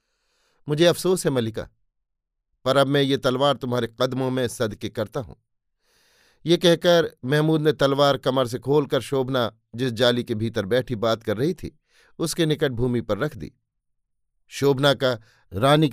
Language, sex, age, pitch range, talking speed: Hindi, male, 50-69, 120-150 Hz, 160 wpm